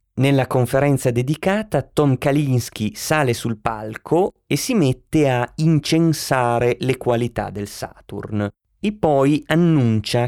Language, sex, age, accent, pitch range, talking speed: Italian, male, 30-49, native, 110-130 Hz, 115 wpm